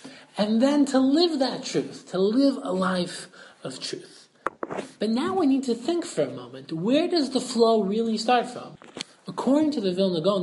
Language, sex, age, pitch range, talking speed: English, male, 30-49, 180-245 Hz, 190 wpm